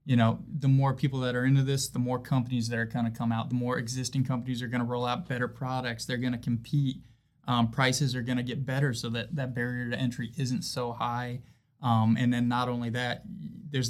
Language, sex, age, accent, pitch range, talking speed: English, male, 20-39, American, 120-130 Hz, 240 wpm